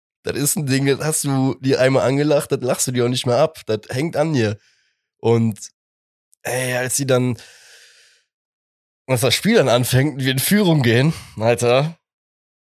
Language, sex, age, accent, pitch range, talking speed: German, male, 20-39, German, 100-140 Hz, 175 wpm